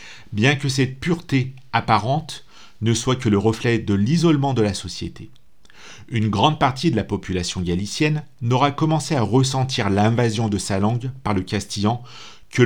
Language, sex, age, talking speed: French, male, 40-59, 160 wpm